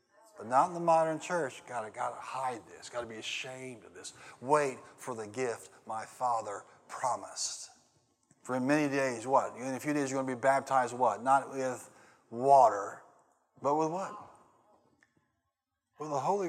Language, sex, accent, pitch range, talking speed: English, male, American, 120-140 Hz, 180 wpm